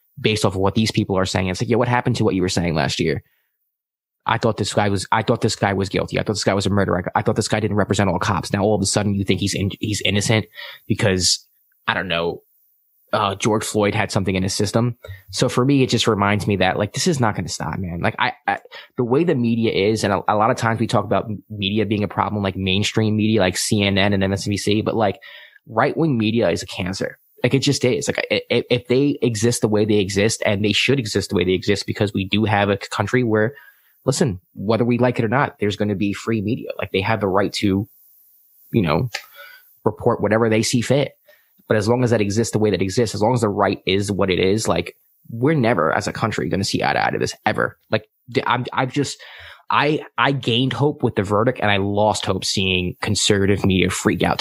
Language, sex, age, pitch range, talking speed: English, male, 20-39, 100-115 Hz, 250 wpm